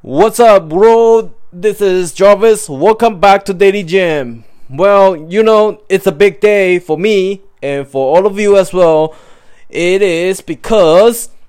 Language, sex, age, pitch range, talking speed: English, male, 20-39, 155-195 Hz, 155 wpm